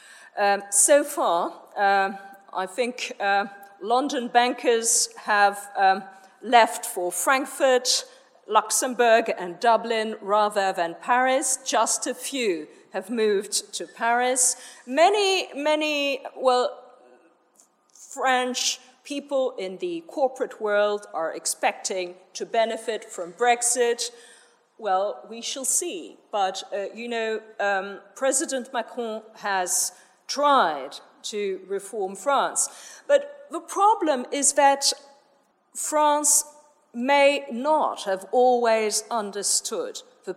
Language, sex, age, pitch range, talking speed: English, female, 40-59, 200-275 Hz, 105 wpm